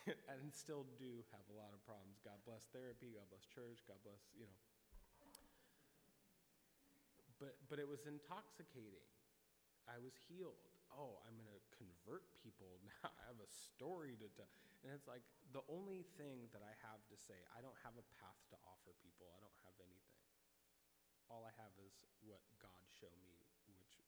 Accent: American